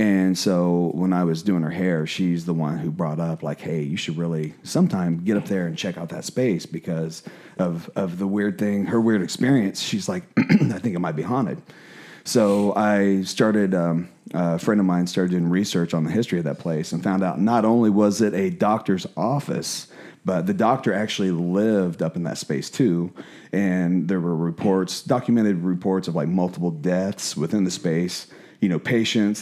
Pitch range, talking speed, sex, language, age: 90-105 Hz, 200 wpm, male, English, 30-49